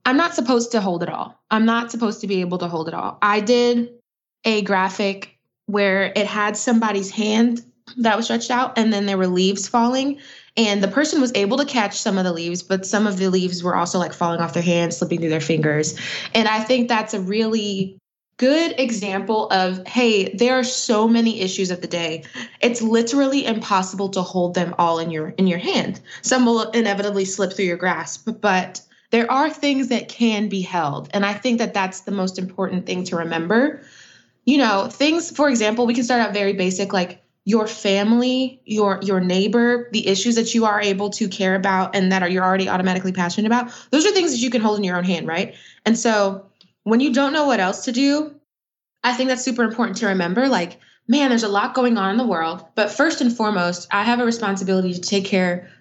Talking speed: 220 wpm